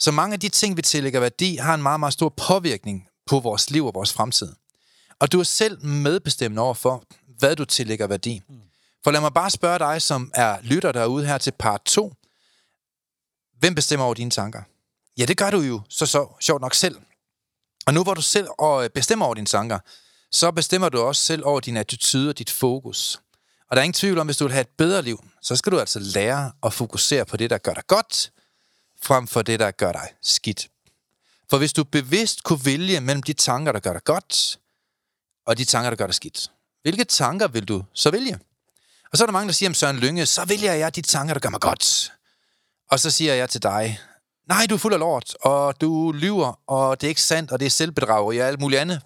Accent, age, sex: native, 30-49, male